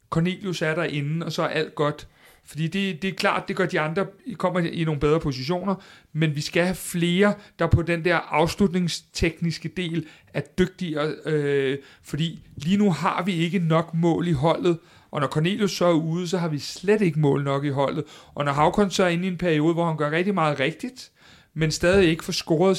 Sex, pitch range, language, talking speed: male, 150-175 Hz, Danish, 215 wpm